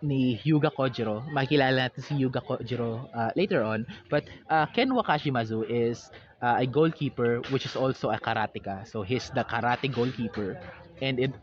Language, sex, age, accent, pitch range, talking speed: Filipino, male, 20-39, native, 115-140 Hz, 170 wpm